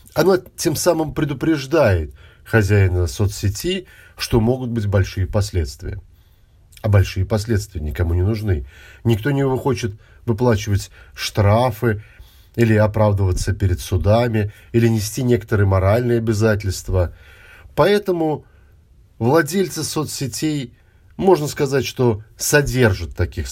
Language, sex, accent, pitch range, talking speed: Russian, male, native, 90-120 Hz, 100 wpm